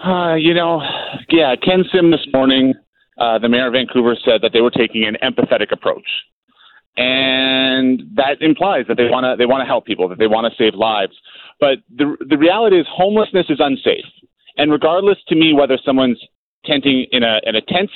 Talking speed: 185 wpm